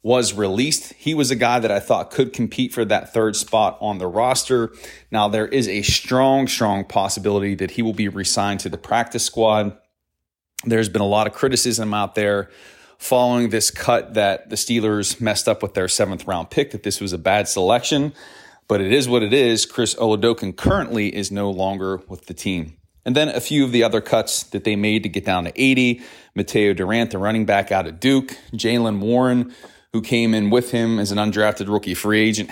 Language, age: English, 30-49